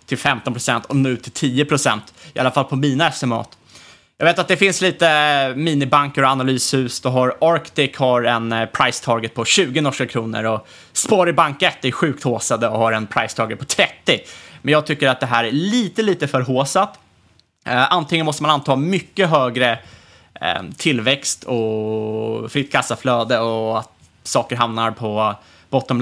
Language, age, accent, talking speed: Swedish, 20-39, Norwegian, 165 wpm